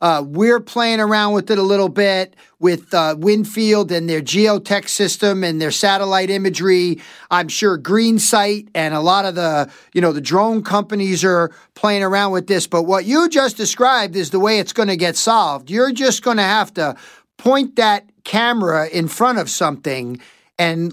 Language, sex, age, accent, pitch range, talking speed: English, male, 50-69, American, 185-235 Hz, 185 wpm